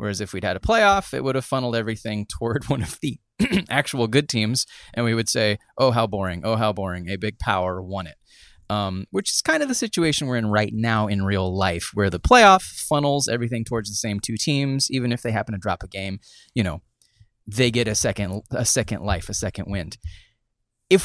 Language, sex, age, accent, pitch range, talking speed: English, male, 30-49, American, 105-135 Hz, 220 wpm